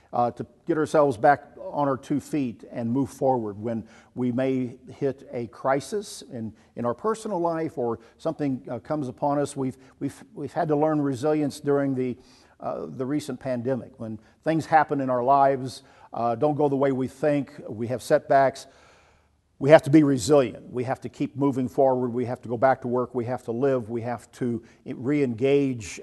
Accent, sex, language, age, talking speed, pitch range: American, male, English, 50-69, 195 wpm, 120-145 Hz